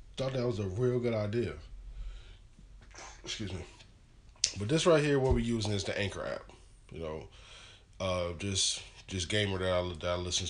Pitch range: 90-115 Hz